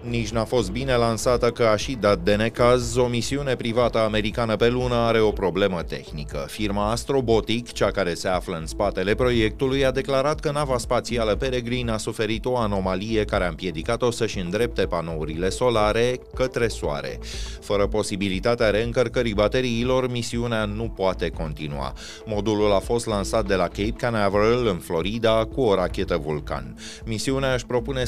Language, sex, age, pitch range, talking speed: Romanian, male, 30-49, 95-120 Hz, 160 wpm